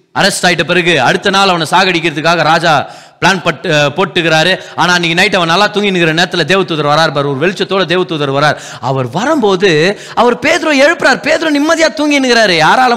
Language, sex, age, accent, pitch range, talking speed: Tamil, male, 30-49, native, 185-255 Hz, 160 wpm